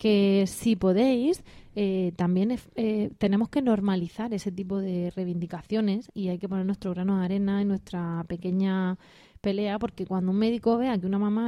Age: 20-39